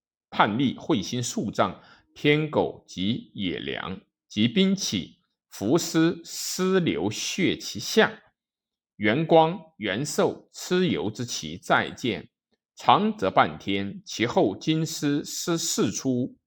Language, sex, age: Chinese, male, 50-69